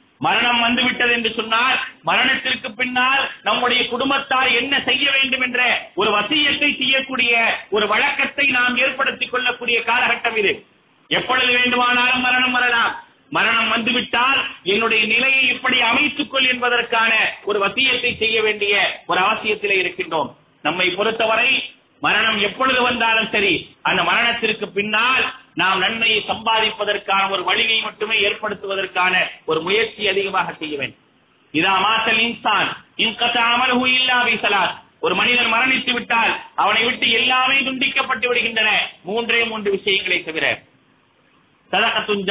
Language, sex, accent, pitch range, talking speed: English, male, Indian, 210-255 Hz, 110 wpm